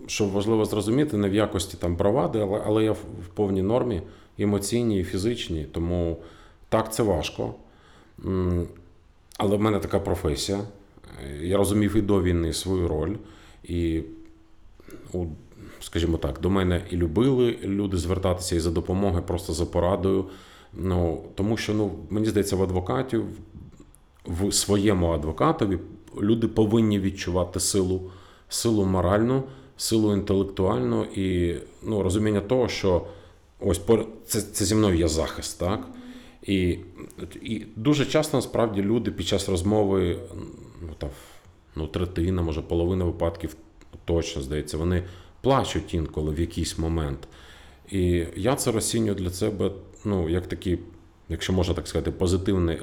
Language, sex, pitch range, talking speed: Ukrainian, male, 85-105 Hz, 135 wpm